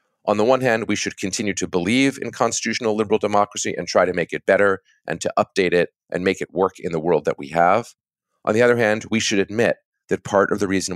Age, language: 30-49, English